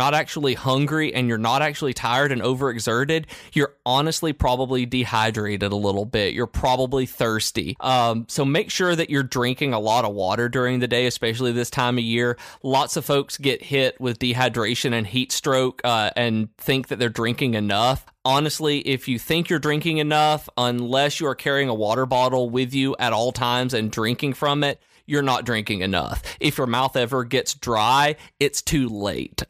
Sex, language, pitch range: male, English, 115-135 Hz